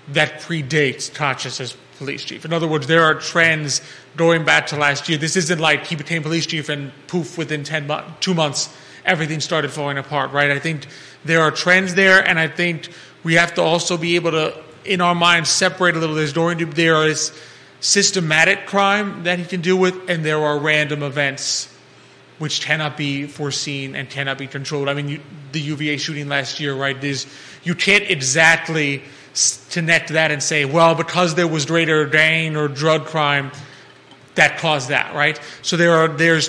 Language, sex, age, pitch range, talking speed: English, male, 30-49, 145-165 Hz, 195 wpm